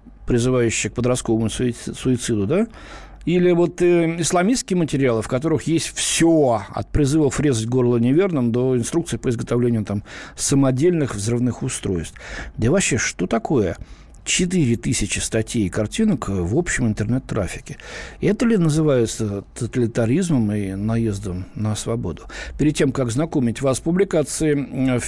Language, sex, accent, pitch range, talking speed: Russian, male, native, 110-170 Hz, 130 wpm